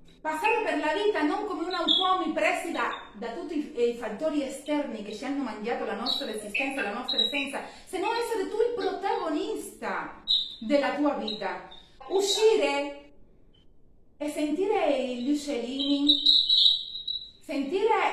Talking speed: 135 wpm